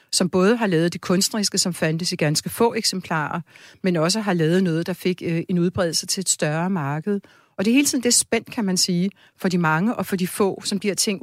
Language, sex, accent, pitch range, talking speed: Danish, female, native, 170-200 Hz, 245 wpm